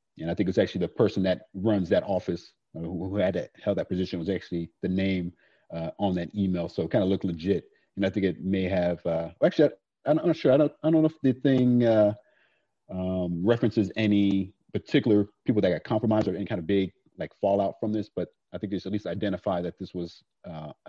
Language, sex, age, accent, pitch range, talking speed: English, male, 40-59, American, 90-110 Hz, 230 wpm